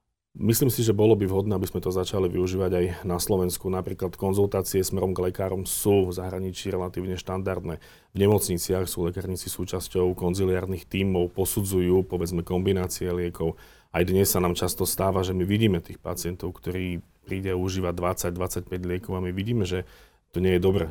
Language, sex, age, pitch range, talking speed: Slovak, male, 40-59, 90-100 Hz, 170 wpm